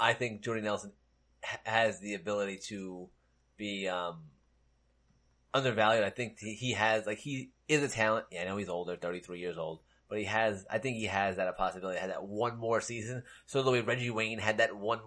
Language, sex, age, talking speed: English, male, 30-49, 205 wpm